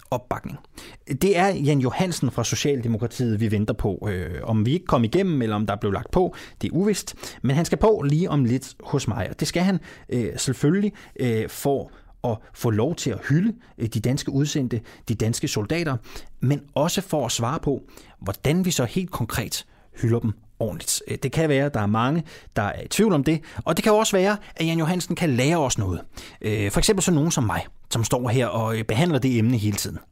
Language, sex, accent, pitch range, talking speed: Danish, male, native, 110-155 Hz, 210 wpm